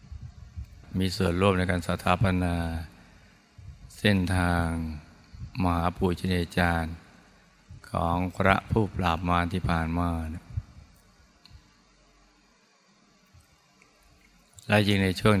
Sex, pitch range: male, 85-100 Hz